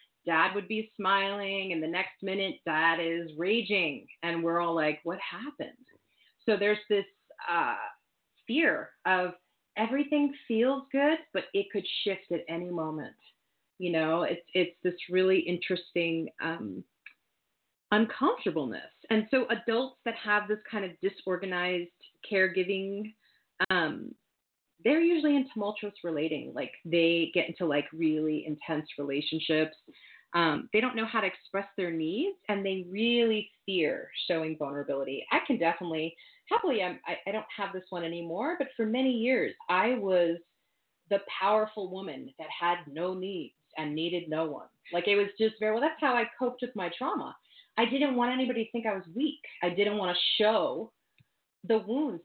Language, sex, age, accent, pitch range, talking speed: English, female, 30-49, American, 170-225 Hz, 160 wpm